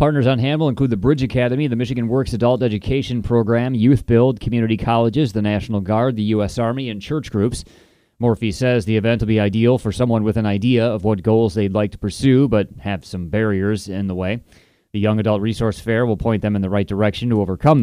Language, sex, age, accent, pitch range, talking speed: English, male, 30-49, American, 105-125 Hz, 225 wpm